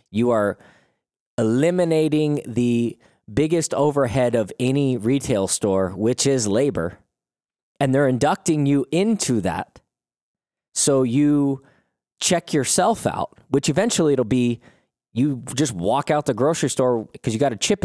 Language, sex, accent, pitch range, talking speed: English, male, American, 110-150 Hz, 135 wpm